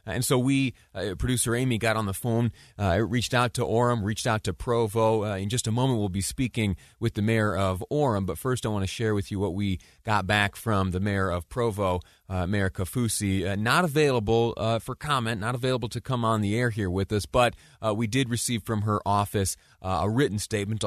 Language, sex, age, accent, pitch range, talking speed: English, male, 30-49, American, 100-130 Hz, 225 wpm